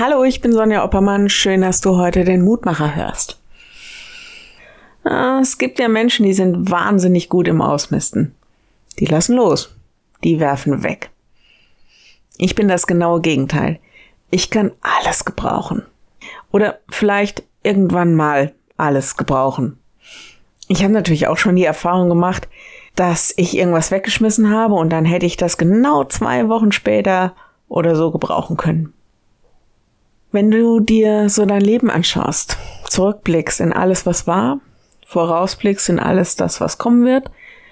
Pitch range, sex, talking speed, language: 165-215 Hz, female, 140 wpm, German